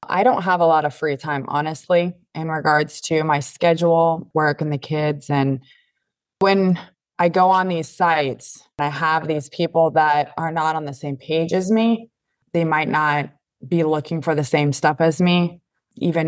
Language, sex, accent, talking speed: English, female, American, 185 wpm